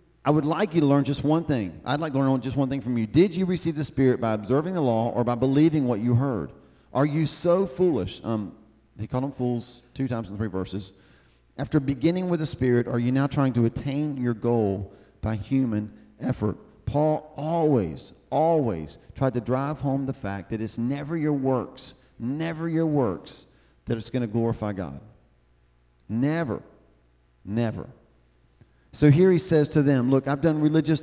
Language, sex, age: English, male, 40-59